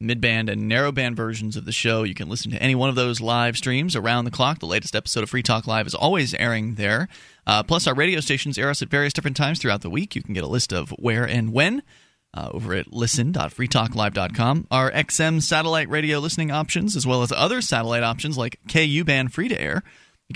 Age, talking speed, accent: 30-49, 225 wpm, American